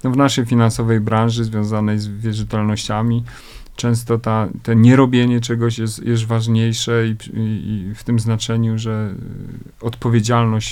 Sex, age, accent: male, 40-59, native